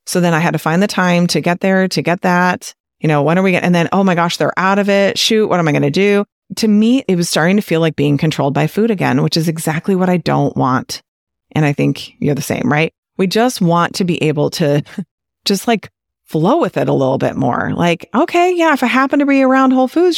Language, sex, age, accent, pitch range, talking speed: English, female, 30-49, American, 160-225 Hz, 270 wpm